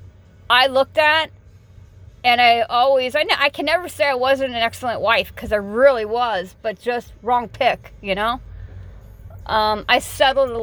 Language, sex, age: English, female, 40-59